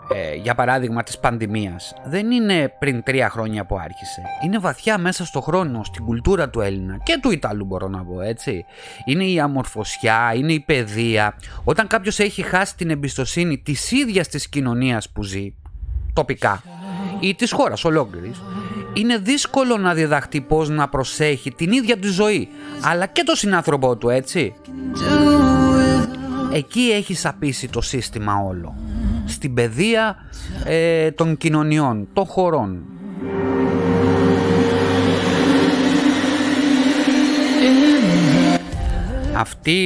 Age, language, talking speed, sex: 30-49, Greek, 125 wpm, male